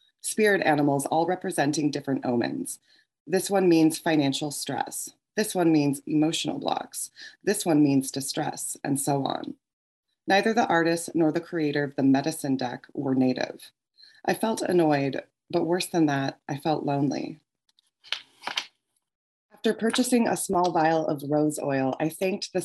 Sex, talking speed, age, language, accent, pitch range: female, 150 wpm, 20-39, English, American, 140-170 Hz